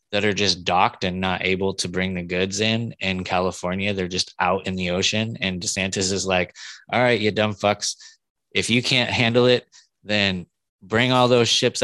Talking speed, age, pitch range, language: 200 wpm, 20-39, 95-105 Hz, English